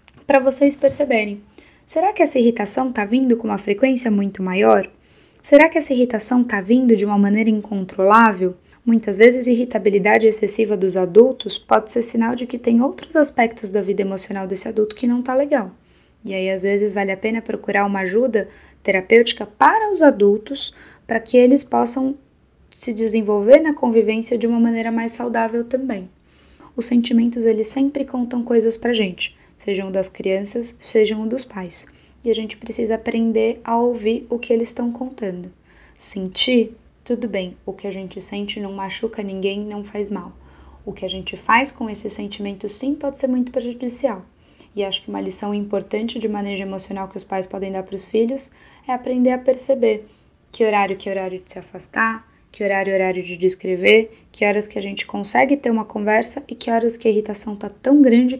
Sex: female